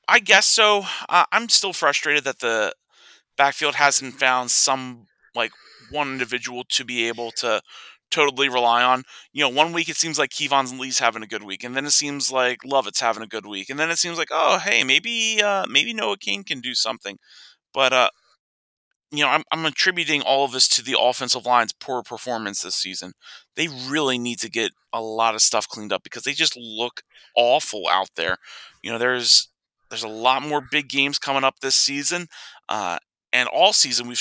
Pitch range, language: 120-155 Hz, English